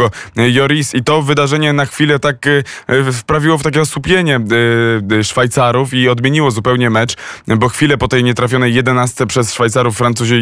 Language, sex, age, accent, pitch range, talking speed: Polish, male, 20-39, native, 115-130 Hz, 145 wpm